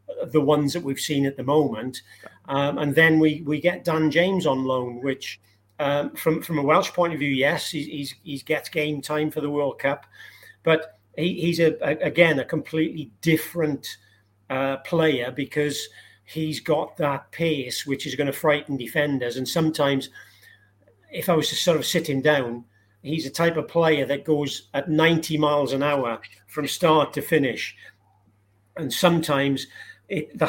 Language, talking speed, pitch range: English, 180 wpm, 135-160 Hz